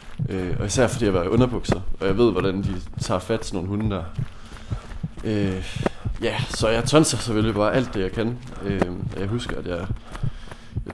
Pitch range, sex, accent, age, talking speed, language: 95-115 Hz, male, native, 20-39, 205 wpm, Danish